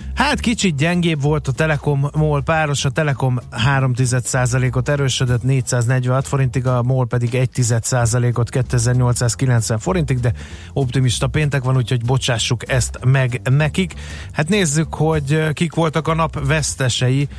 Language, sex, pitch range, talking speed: Hungarian, male, 125-150 Hz, 135 wpm